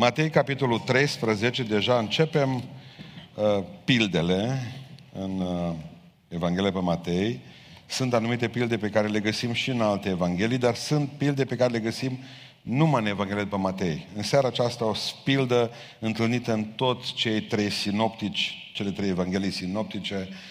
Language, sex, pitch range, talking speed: Romanian, male, 110-145 Hz, 145 wpm